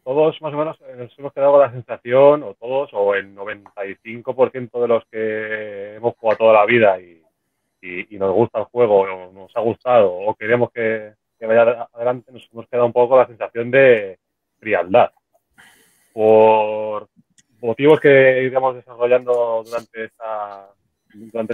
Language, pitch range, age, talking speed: English, 105-140 Hz, 30-49, 160 wpm